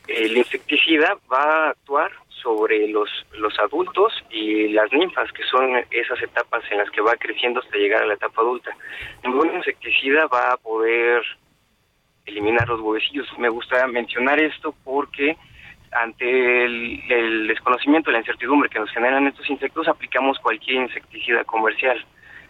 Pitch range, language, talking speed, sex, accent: 115-150 Hz, Spanish, 145 wpm, male, Mexican